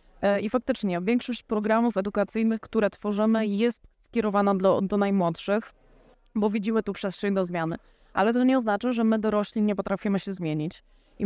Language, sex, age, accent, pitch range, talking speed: Polish, female, 20-39, native, 185-220 Hz, 160 wpm